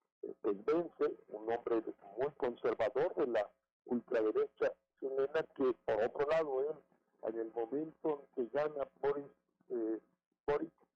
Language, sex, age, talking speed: Spanish, male, 50-69, 125 wpm